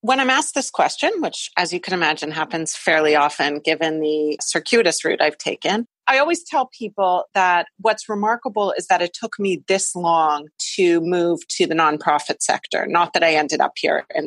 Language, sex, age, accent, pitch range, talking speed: English, female, 40-59, American, 160-195 Hz, 195 wpm